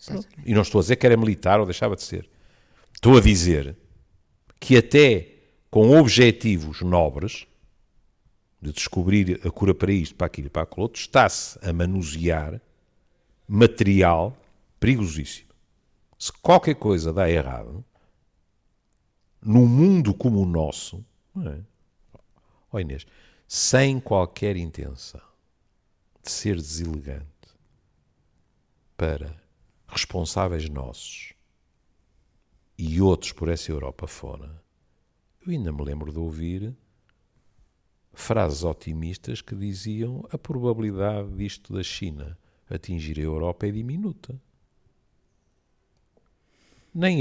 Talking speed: 110 wpm